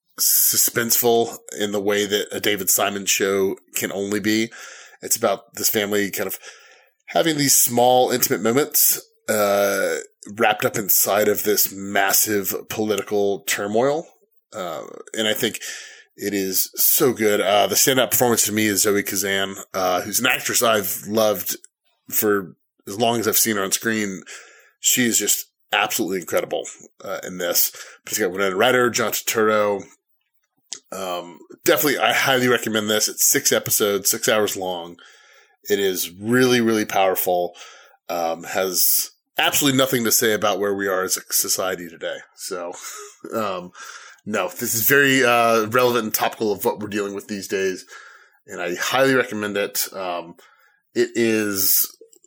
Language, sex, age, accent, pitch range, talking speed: English, male, 30-49, American, 100-130 Hz, 155 wpm